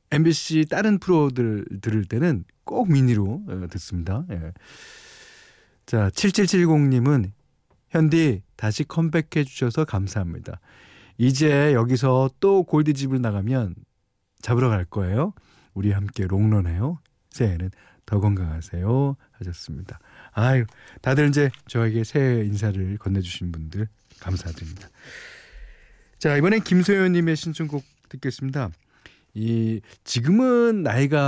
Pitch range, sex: 100-145 Hz, male